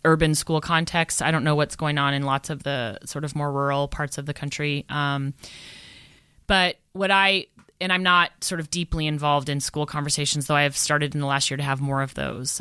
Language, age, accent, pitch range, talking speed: English, 30-49, American, 145-165 Hz, 230 wpm